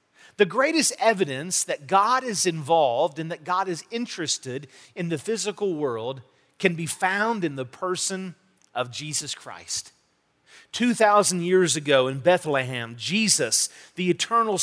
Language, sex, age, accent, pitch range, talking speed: English, male, 40-59, American, 145-205 Hz, 135 wpm